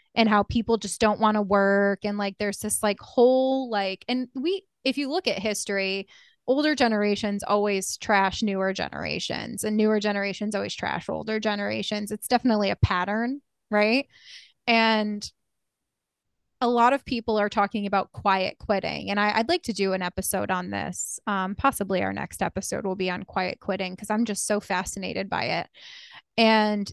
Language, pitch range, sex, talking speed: English, 200-220 Hz, female, 170 wpm